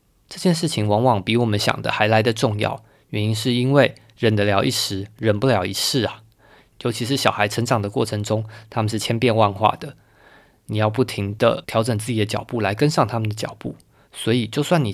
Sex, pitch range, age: male, 105-130 Hz, 20-39